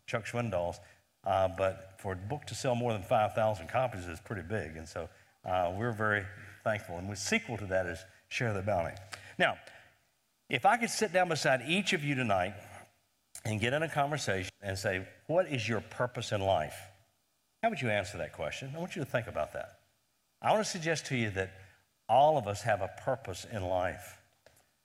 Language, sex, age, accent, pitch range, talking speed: English, male, 60-79, American, 100-140 Hz, 200 wpm